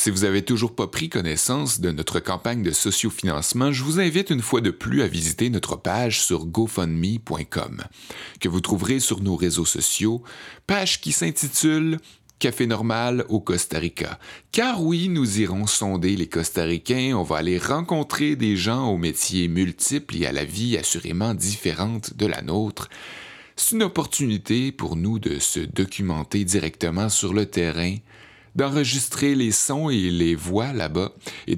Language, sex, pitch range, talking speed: French, male, 90-130 Hz, 165 wpm